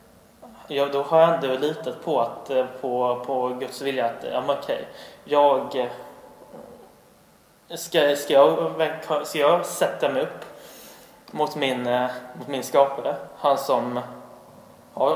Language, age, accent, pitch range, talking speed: Swedish, 20-39, native, 125-150 Hz, 125 wpm